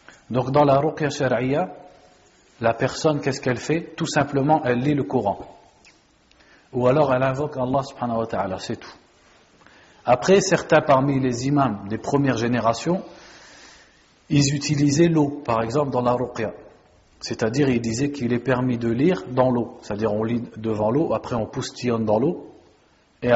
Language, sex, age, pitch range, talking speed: French, male, 50-69, 115-145 Hz, 160 wpm